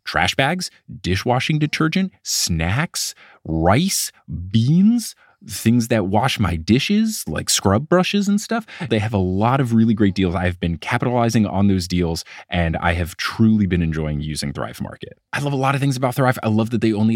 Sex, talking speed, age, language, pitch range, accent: male, 185 wpm, 20-39, English, 95-140 Hz, American